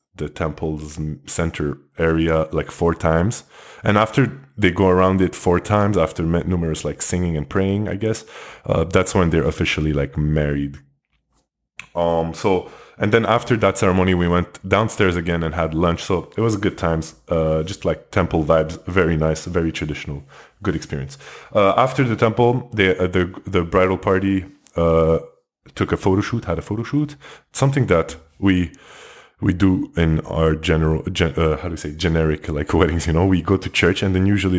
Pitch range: 80-100 Hz